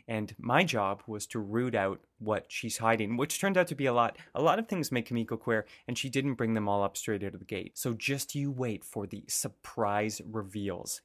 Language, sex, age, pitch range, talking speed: English, male, 30-49, 110-145 Hz, 240 wpm